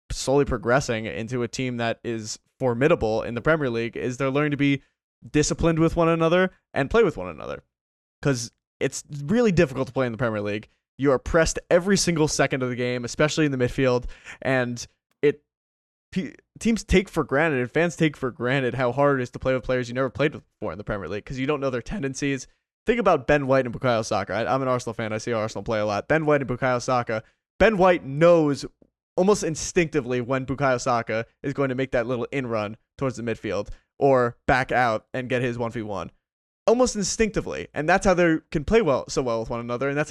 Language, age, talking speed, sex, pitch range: English, 20-39, 225 wpm, male, 120-155 Hz